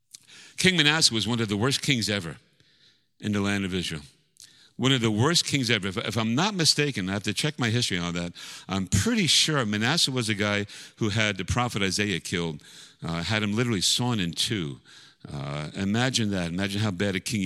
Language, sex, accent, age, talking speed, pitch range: English, male, American, 50-69, 210 wpm, 100-145 Hz